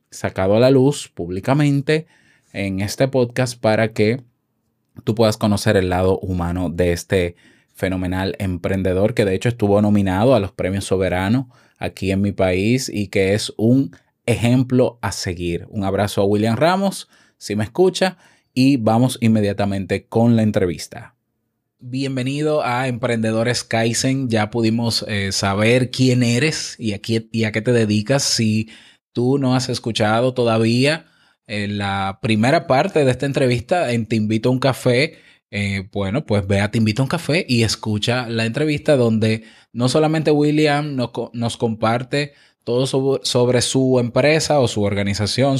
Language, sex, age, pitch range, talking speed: Spanish, male, 20-39, 105-130 Hz, 155 wpm